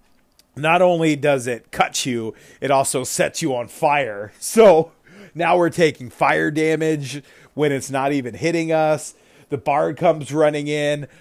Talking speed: 155 wpm